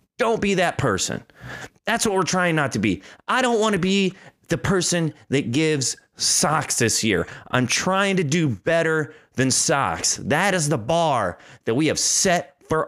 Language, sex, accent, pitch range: English, male, American, 125-175 Hz